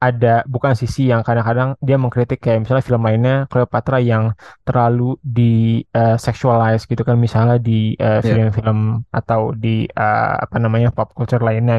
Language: Indonesian